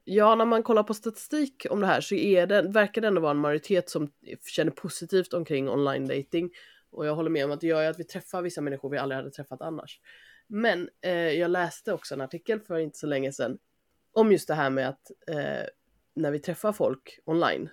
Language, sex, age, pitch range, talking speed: Swedish, female, 20-39, 145-190 Hz, 225 wpm